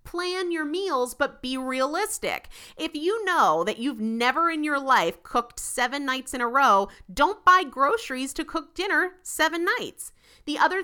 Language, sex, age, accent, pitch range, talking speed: English, female, 30-49, American, 205-305 Hz, 170 wpm